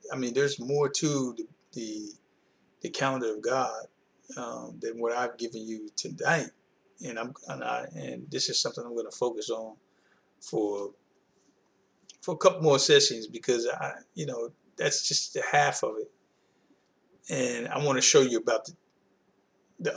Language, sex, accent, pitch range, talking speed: English, male, American, 120-190 Hz, 160 wpm